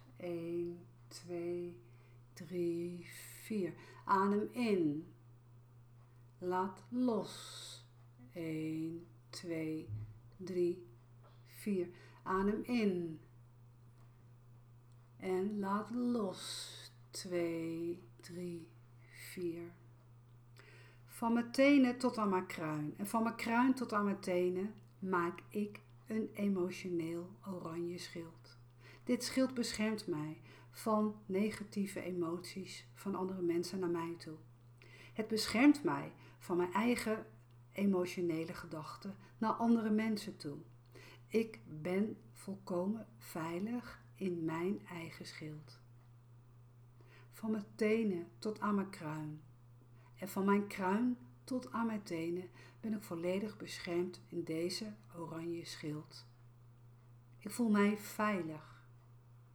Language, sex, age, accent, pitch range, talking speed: Dutch, female, 60-79, Dutch, 120-195 Hz, 100 wpm